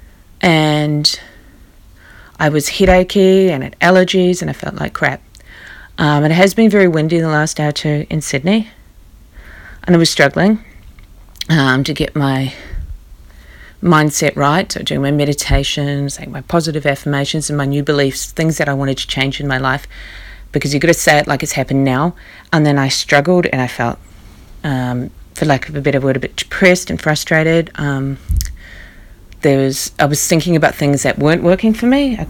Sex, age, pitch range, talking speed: female, 30-49, 130-160 Hz, 185 wpm